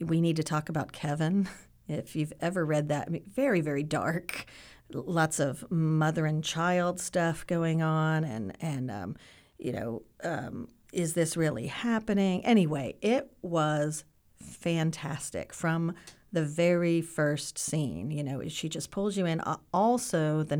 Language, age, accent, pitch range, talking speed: English, 40-59, American, 150-175 Hz, 145 wpm